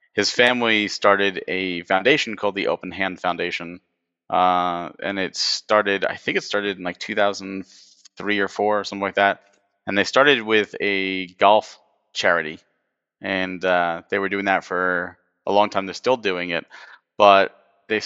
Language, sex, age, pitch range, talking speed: English, male, 30-49, 95-110 Hz, 165 wpm